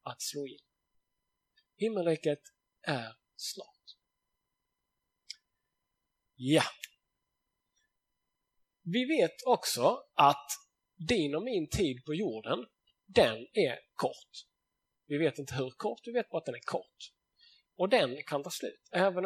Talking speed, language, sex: 120 wpm, Swedish, male